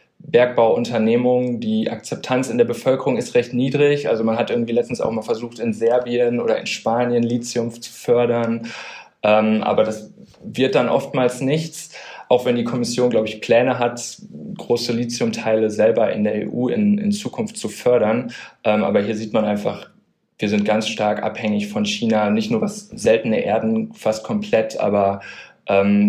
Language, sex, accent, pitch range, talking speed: German, male, German, 115-150 Hz, 170 wpm